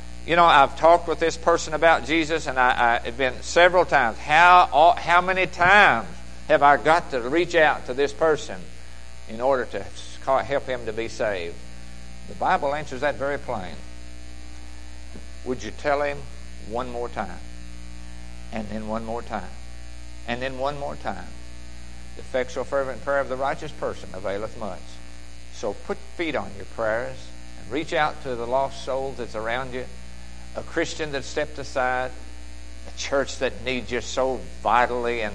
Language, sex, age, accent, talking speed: English, male, 60-79, American, 165 wpm